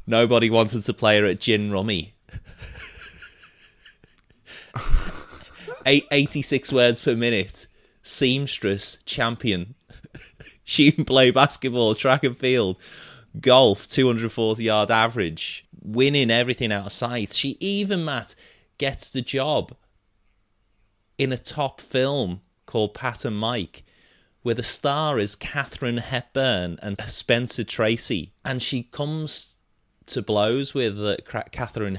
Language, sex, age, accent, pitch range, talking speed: English, male, 30-49, British, 100-130 Hz, 115 wpm